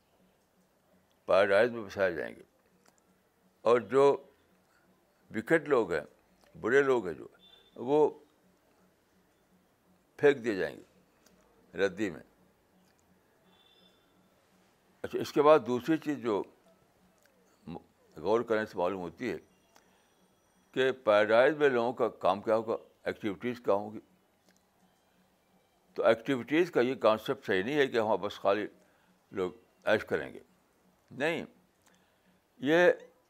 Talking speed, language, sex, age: 115 wpm, Urdu, male, 60-79